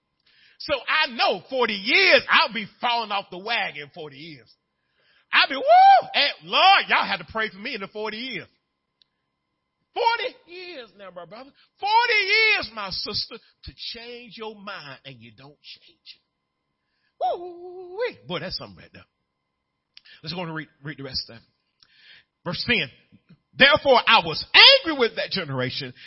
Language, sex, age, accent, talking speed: English, male, 40-59, American, 160 wpm